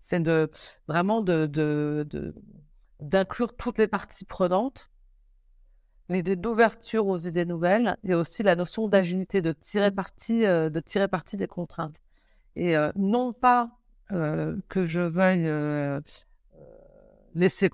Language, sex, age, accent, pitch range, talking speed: French, female, 50-69, French, 155-190 Hz, 130 wpm